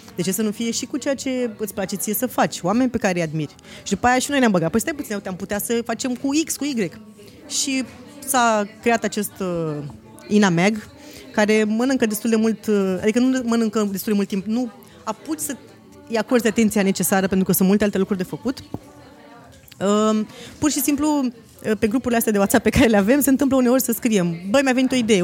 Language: Romanian